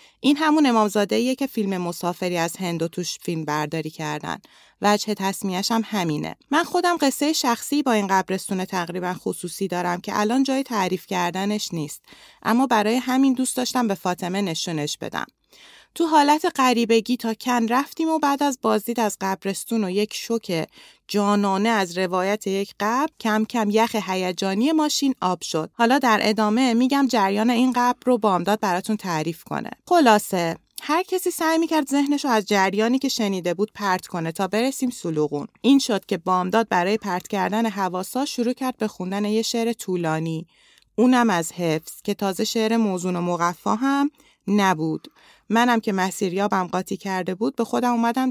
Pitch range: 185-250 Hz